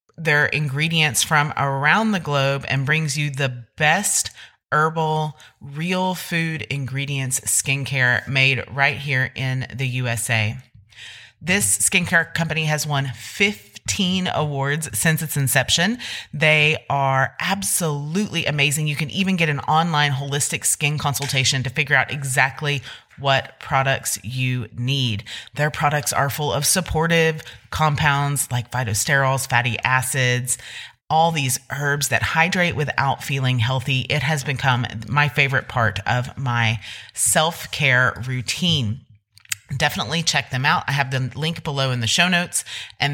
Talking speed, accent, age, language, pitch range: 135 wpm, American, 30-49, English, 125-155 Hz